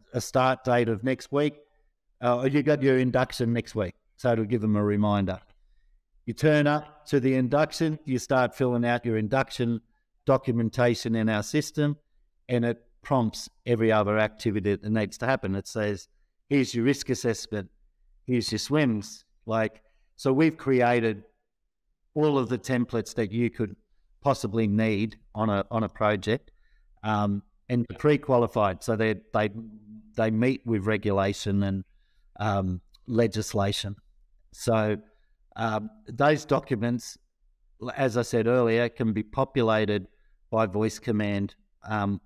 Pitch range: 105-130 Hz